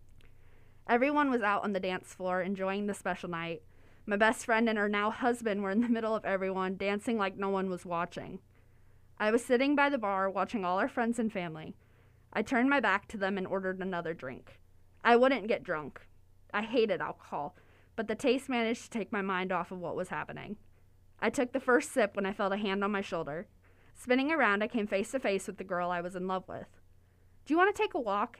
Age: 20-39